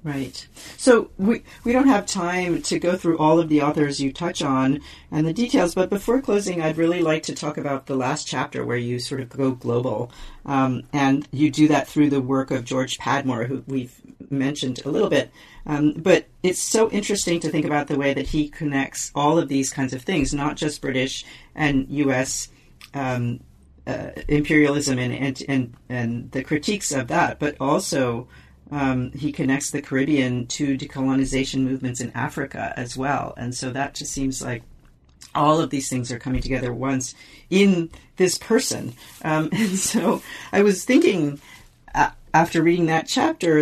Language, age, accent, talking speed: English, 40-59, American, 180 wpm